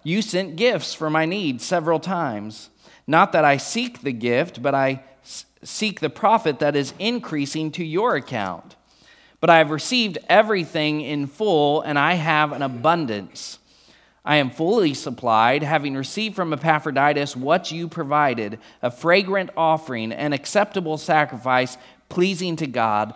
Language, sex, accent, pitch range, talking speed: English, male, American, 125-160 Hz, 150 wpm